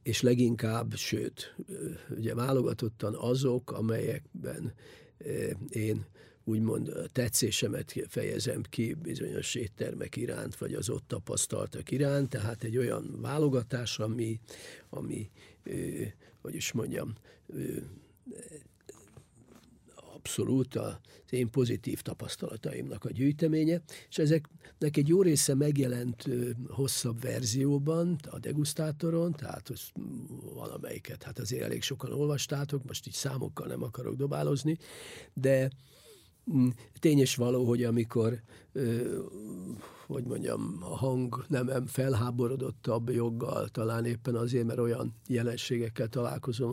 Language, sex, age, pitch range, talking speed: English, male, 50-69, 115-135 Hz, 105 wpm